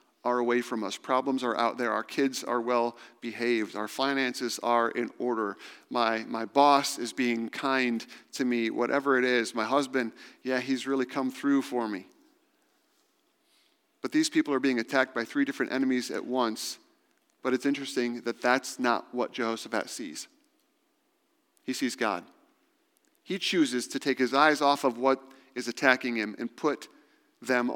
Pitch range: 120-190 Hz